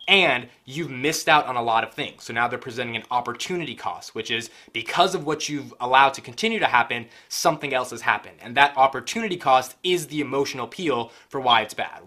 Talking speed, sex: 215 wpm, male